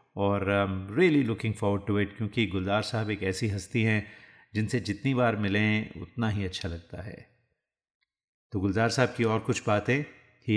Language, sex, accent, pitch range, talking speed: Hindi, male, native, 95-115 Hz, 180 wpm